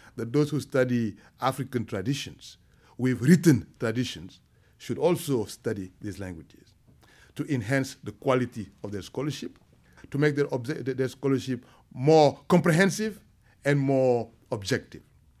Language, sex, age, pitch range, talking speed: English, male, 60-79, 120-160 Hz, 125 wpm